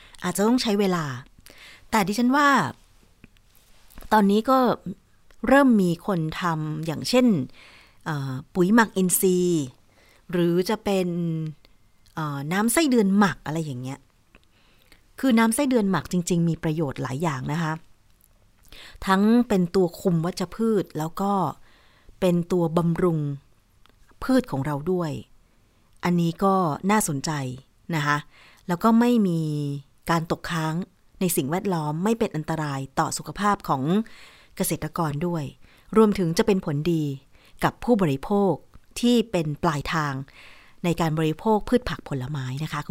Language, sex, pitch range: Thai, female, 140-195 Hz